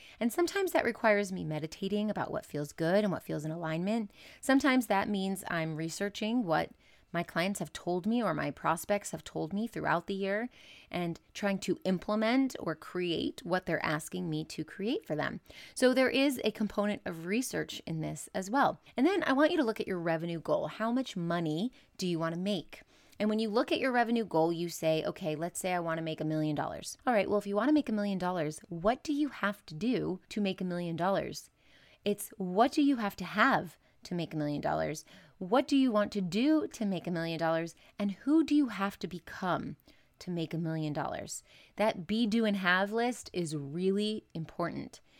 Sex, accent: female, American